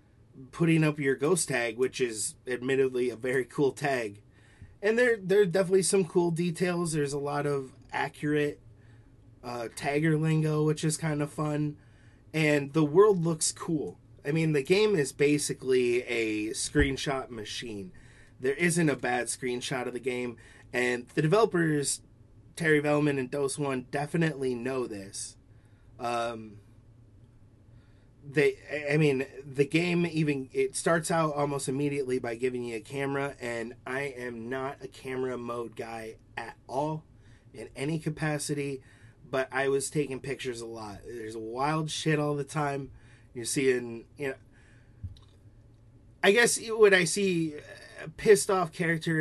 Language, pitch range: English, 115-150 Hz